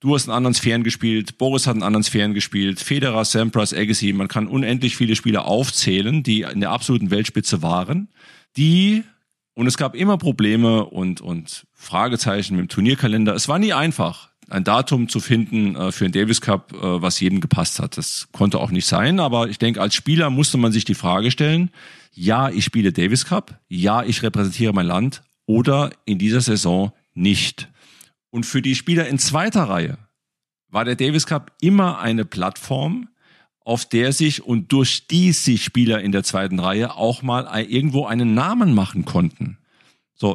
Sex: male